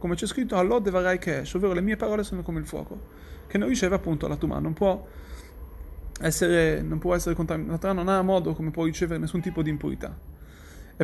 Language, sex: Italian, male